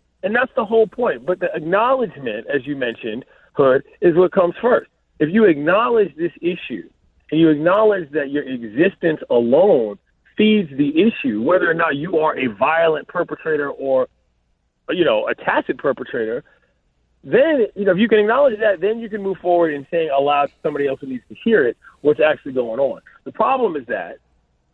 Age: 40-59